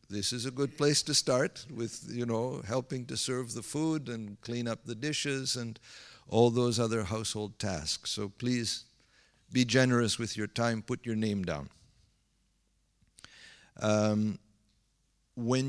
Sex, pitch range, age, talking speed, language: male, 105-125 Hz, 50-69, 150 wpm, English